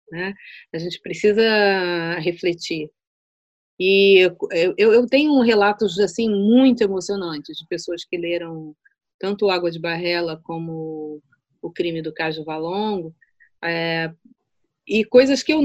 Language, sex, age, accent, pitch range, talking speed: Portuguese, female, 30-49, Brazilian, 165-220 Hz, 135 wpm